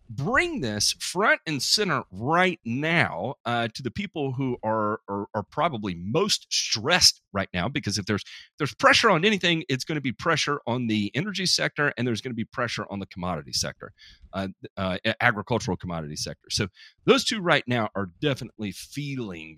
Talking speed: 185 wpm